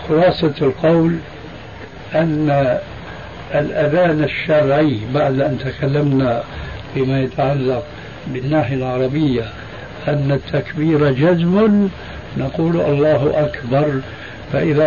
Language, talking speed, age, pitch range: Arabic, 75 wpm, 60-79, 130-155 Hz